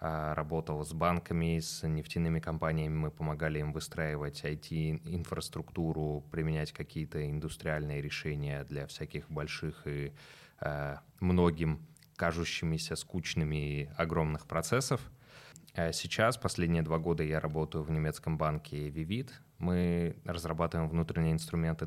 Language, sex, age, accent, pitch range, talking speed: Russian, male, 20-39, native, 80-85 Hz, 105 wpm